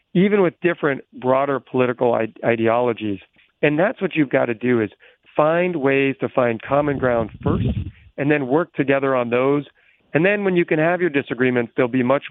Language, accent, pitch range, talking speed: English, American, 120-150 Hz, 185 wpm